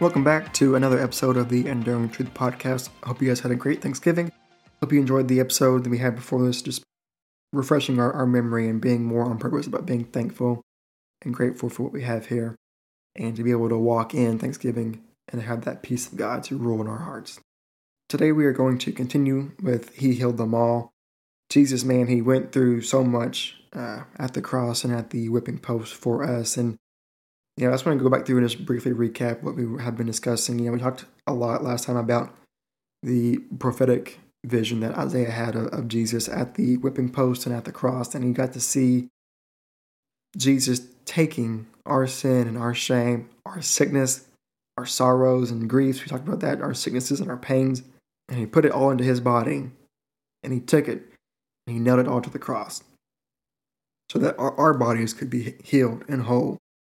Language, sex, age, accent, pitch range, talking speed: English, male, 20-39, American, 120-130 Hz, 205 wpm